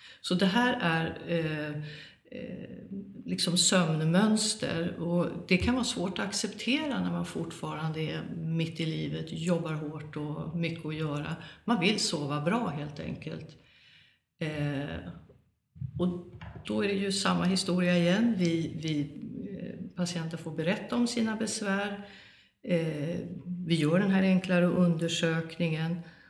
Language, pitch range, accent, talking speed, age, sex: Swedish, 160-190 Hz, native, 125 wpm, 60-79, female